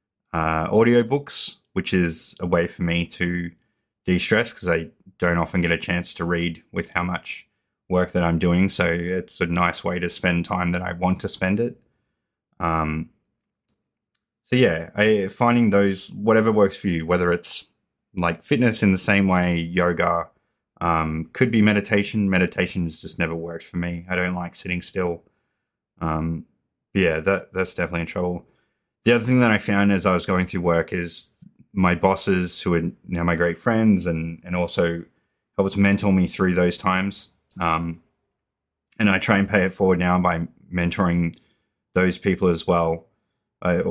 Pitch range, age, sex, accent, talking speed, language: 85-95 Hz, 20-39, male, Australian, 175 wpm, English